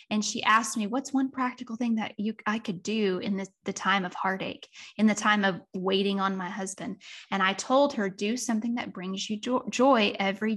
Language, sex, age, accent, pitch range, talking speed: English, female, 10-29, American, 215-265 Hz, 215 wpm